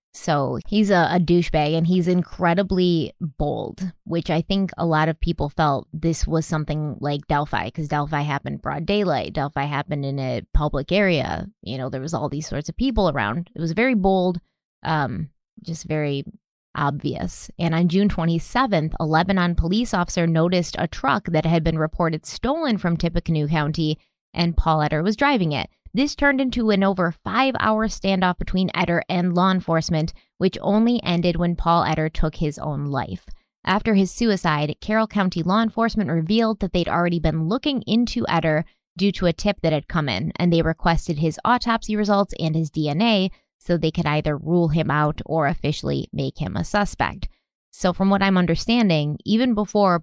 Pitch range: 155-195 Hz